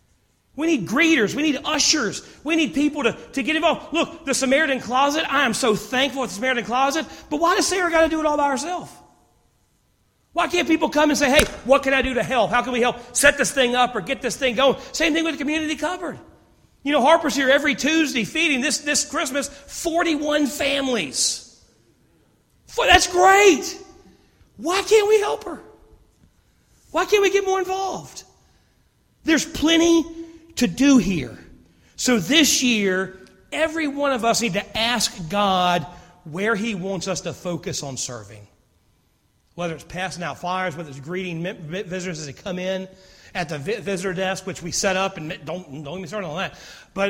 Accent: American